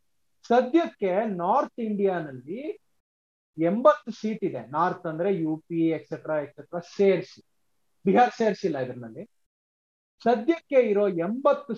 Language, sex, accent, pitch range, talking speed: Kannada, male, native, 170-235 Hz, 95 wpm